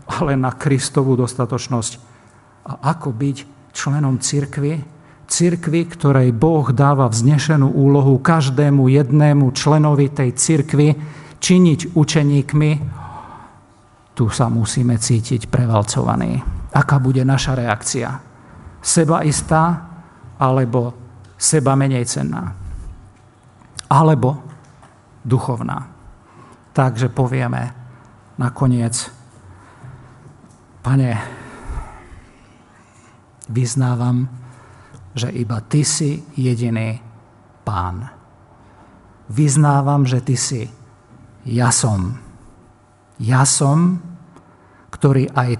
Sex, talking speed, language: male, 80 wpm, Slovak